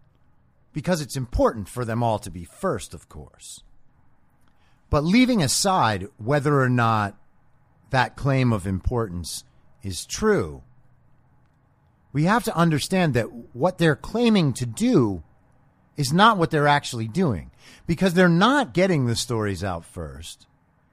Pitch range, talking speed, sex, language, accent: 115-155 Hz, 135 wpm, male, English, American